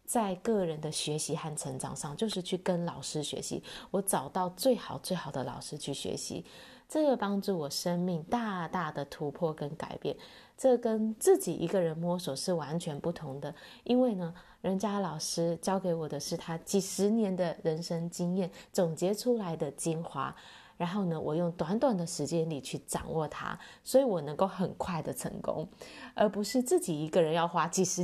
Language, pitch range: Chinese, 160-200 Hz